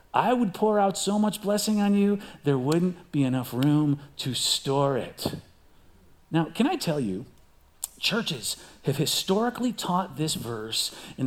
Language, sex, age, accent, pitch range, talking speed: English, male, 40-59, American, 145-235 Hz, 155 wpm